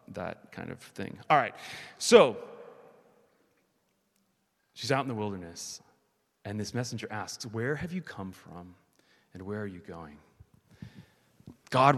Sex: male